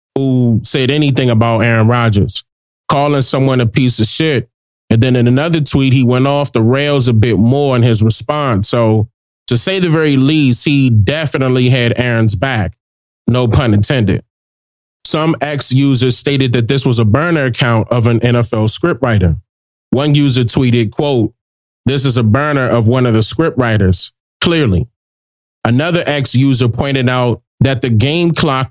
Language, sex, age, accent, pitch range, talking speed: English, male, 30-49, American, 110-140 Hz, 160 wpm